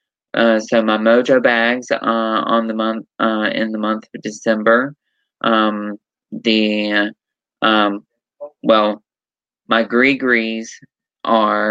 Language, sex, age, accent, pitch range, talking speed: English, male, 20-39, American, 105-115 Hz, 115 wpm